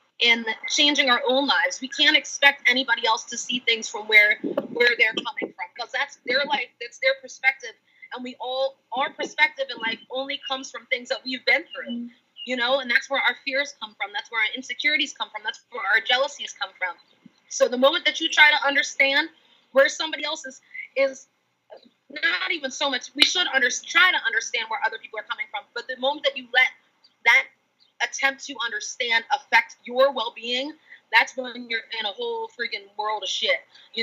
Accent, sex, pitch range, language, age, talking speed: American, female, 230-285 Hz, English, 30-49, 205 wpm